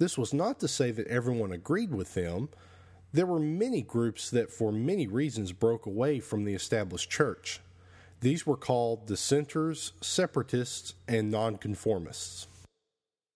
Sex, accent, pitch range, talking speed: male, American, 100-150 Hz, 140 wpm